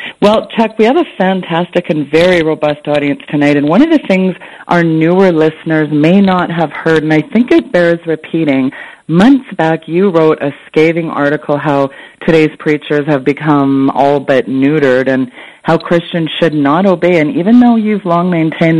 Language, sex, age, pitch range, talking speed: English, female, 40-59, 150-175 Hz, 180 wpm